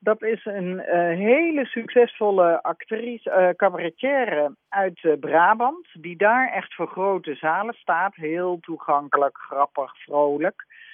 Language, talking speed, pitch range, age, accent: Dutch, 125 wpm, 150-210 Hz, 50-69, Dutch